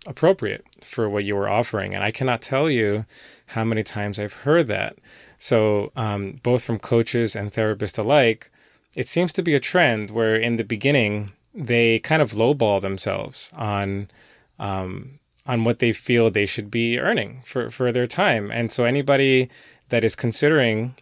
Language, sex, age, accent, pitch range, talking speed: English, male, 20-39, American, 105-130 Hz, 170 wpm